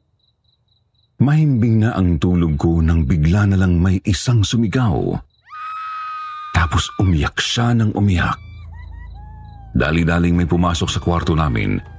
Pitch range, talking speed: 75-100 Hz, 115 wpm